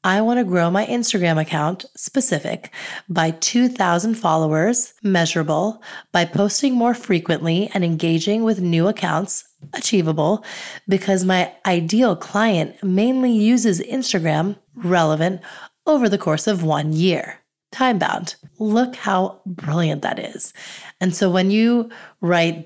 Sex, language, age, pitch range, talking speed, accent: female, English, 30-49, 165-210 Hz, 125 wpm, American